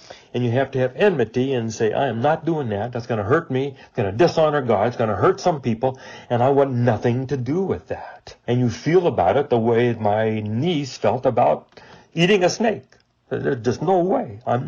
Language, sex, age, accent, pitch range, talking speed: English, male, 60-79, American, 120-145 Hz, 230 wpm